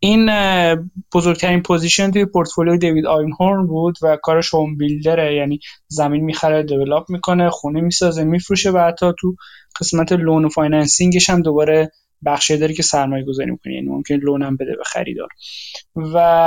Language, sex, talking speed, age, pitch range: Persian, male, 155 wpm, 20-39, 155-185 Hz